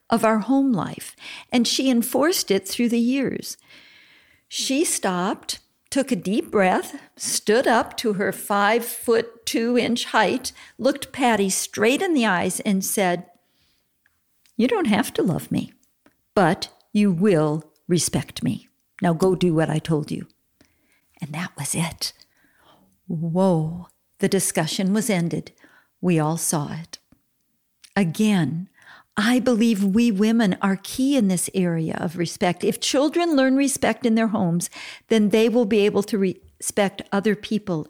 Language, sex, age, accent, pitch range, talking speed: English, female, 50-69, American, 180-230 Hz, 140 wpm